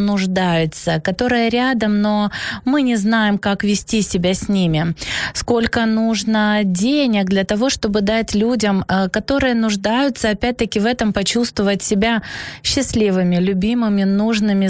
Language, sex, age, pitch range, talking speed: Ukrainian, female, 20-39, 200-240 Hz, 125 wpm